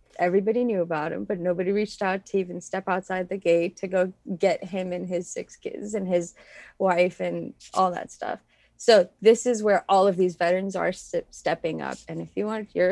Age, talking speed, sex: 20-39, 215 wpm, female